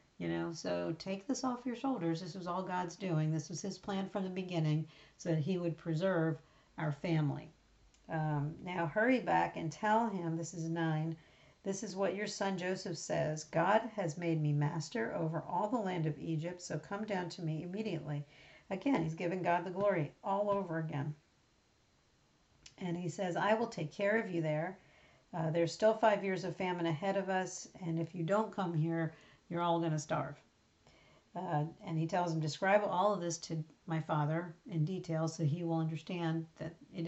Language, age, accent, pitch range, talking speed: English, 50-69, American, 160-190 Hz, 195 wpm